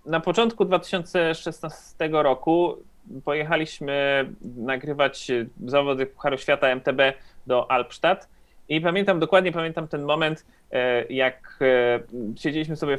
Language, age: Polish, 30-49